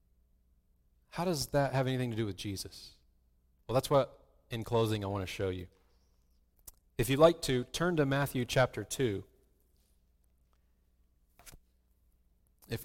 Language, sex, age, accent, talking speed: English, male, 40-59, American, 135 wpm